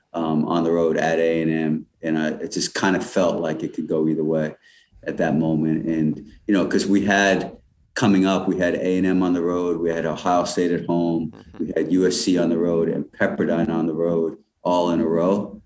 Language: English